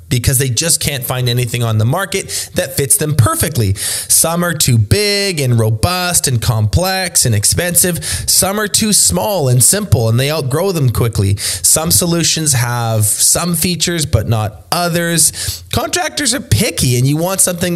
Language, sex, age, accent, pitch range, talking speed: English, male, 20-39, American, 110-160 Hz, 165 wpm